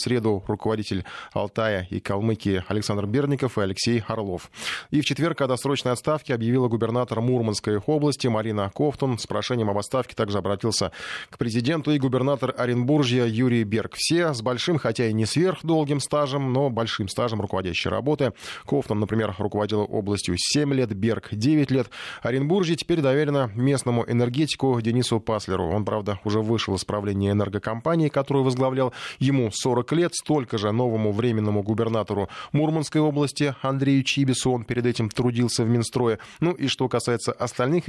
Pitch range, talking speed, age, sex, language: 110-140 Hz, 155 wpm, 20-39, male, Russian